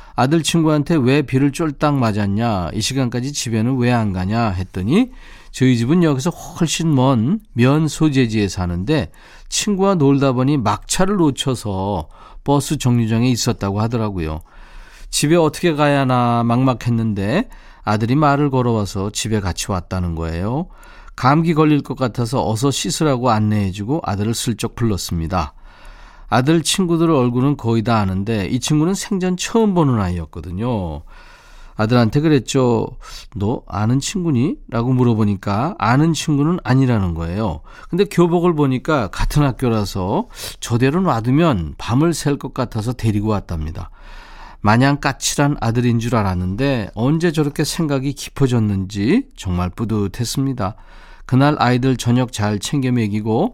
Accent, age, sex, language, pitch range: native, 40-59, male, Korean, 105-150 Hz